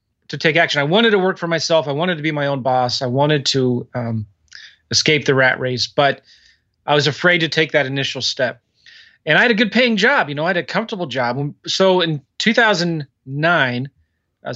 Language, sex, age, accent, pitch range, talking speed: English, male, 30-49, American, 130-170 Hz, 210 wpm